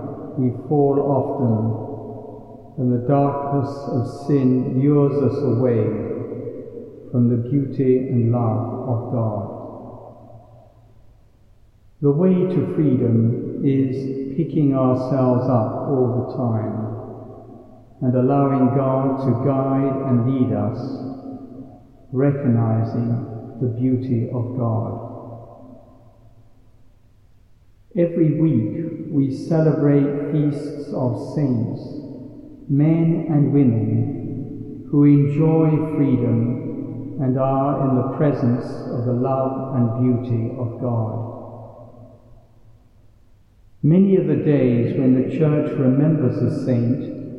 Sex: male